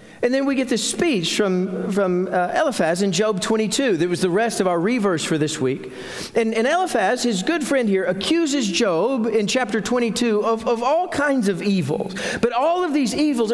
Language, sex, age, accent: English, male, 40-59, American